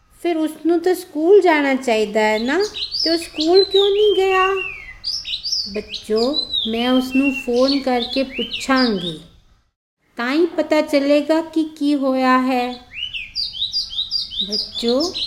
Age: 50-69